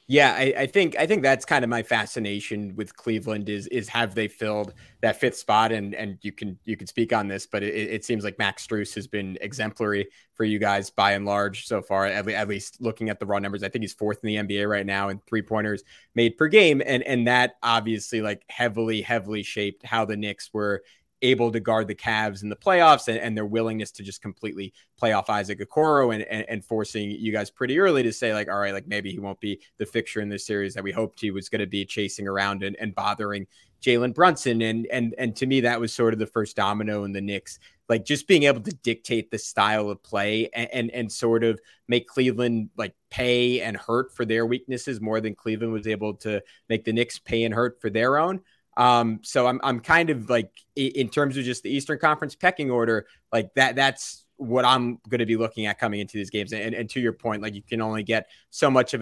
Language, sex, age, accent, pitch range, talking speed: English, male, 20-39, American, 105-120 Hz, 240 wpm